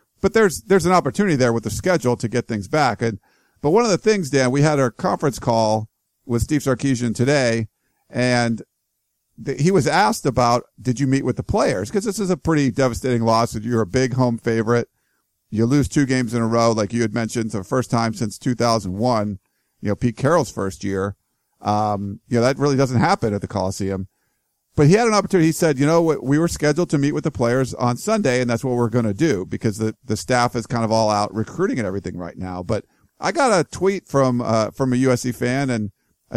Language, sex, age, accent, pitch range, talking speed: English, male, 50-69, American, 115-145 Hz, 230 wpm